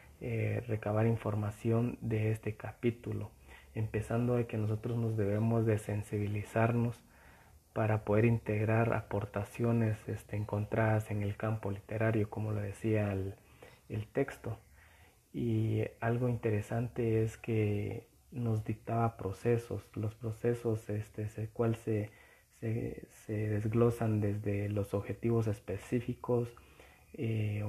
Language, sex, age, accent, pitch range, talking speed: Spanish, male, 30-49, Mexican, 105-115 Hz, 115 wpm